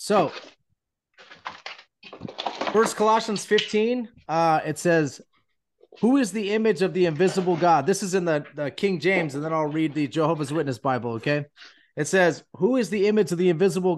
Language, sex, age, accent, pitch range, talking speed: English, male, 30-49, American, 155-195 Hz, 170 wpm